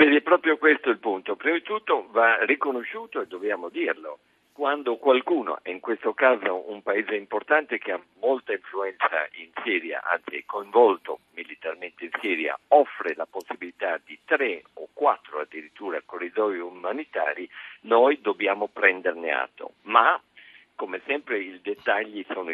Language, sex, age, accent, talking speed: Italian, male, 50-69, native, 145 wpm